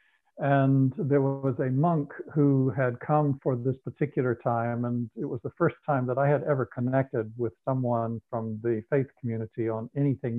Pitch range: 120-145 Hz